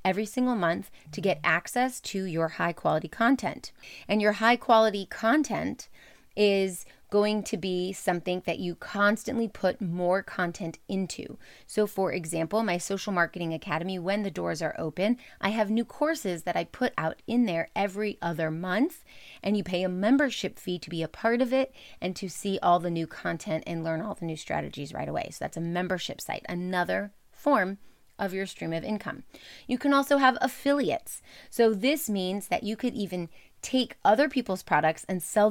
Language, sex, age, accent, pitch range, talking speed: English, female, 30-49, American, 180-225 Hz, 185 wpm